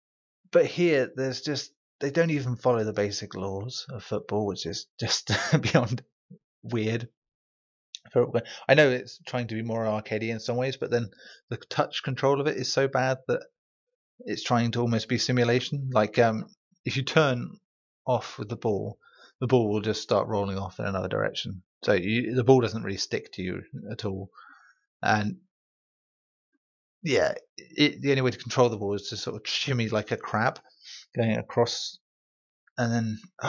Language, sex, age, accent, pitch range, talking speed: English, male, 30-49, British, 110-140 Hz, 175 wpm